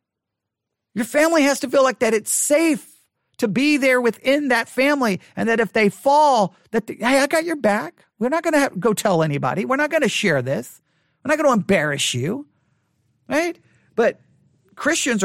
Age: 40-59